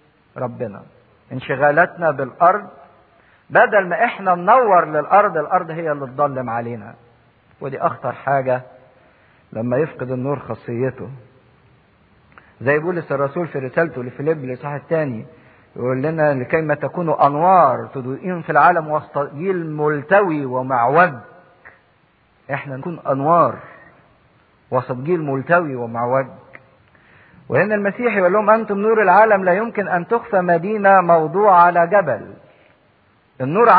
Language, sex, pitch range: English, male, 140-215 Hz